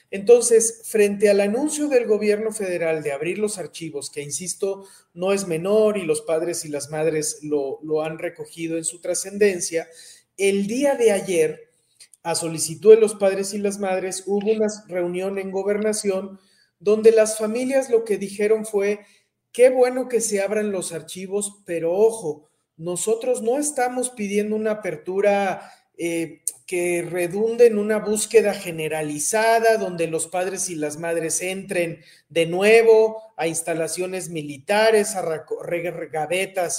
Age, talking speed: 40-59, 145 wpm